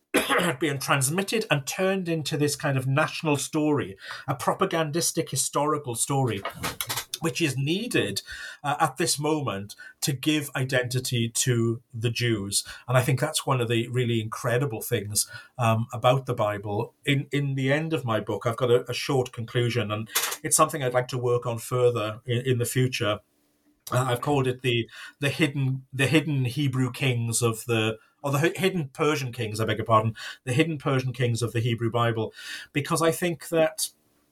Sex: male